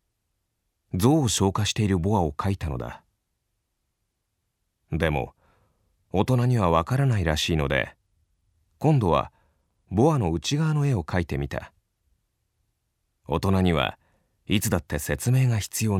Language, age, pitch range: Chinese, 30-49, 80-110 Hz